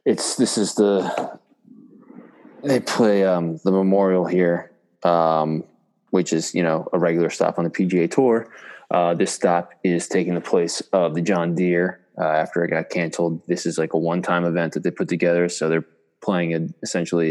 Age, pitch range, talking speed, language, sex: 20-39, 85-95 Hz, 185 wpm, English, male